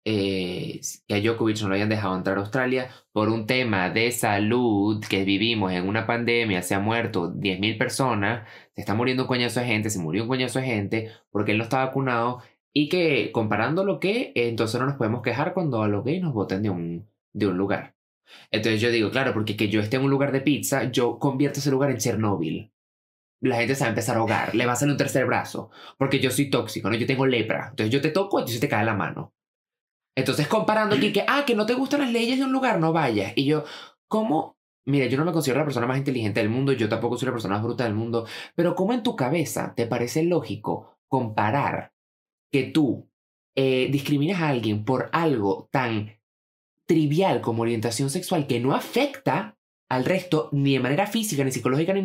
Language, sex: Spanish, male